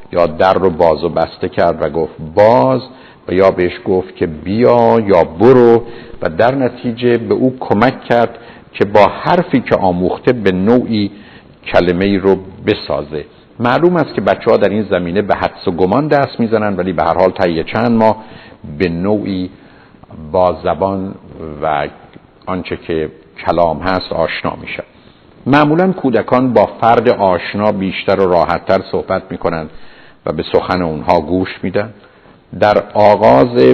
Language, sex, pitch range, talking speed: Persian, male, 85-110 Hz, 155 wpm